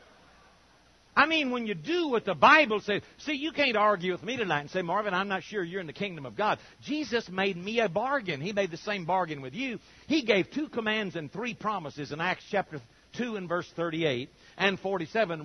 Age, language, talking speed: 60-79, English, 220 wpm